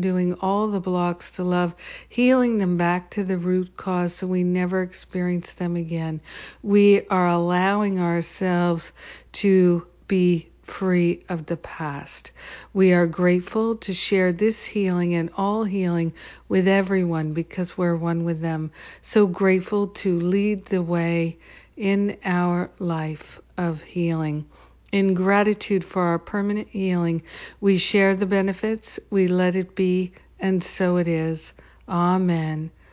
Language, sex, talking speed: English, female, 140 wpm